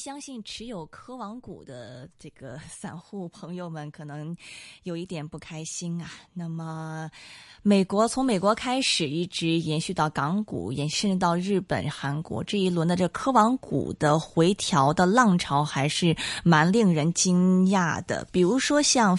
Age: 20-39